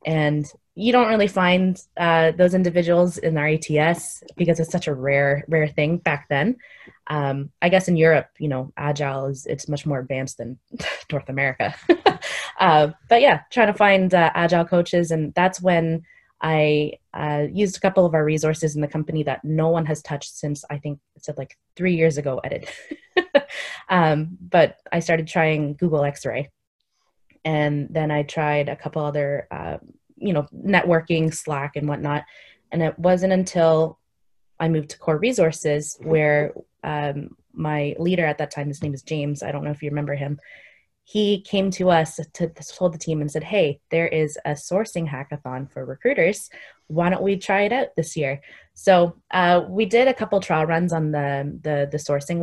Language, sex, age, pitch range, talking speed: English, female, 20-39, 145-175 Hz, 190 wpm